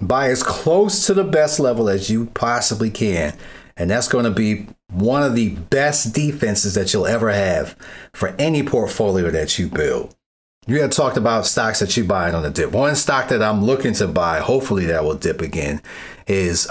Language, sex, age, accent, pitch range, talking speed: English, male, 30-49, American, 90-115 Hz, 195 wpm